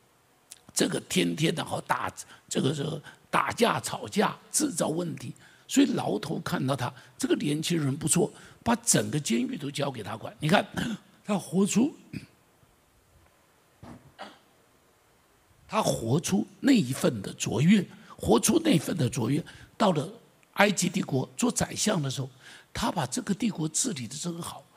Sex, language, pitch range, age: male, Chinese, 150-220 Hz, 60-79